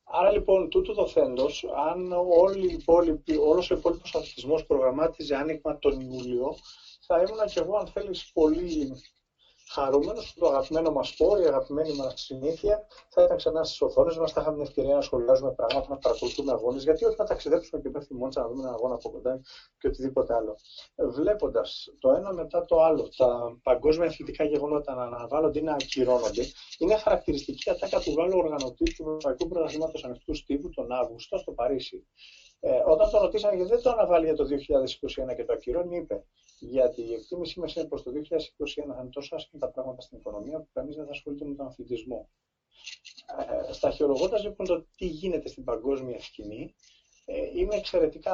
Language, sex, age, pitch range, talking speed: Greek, male, 30-49, 140-200 Hz, 175 wpm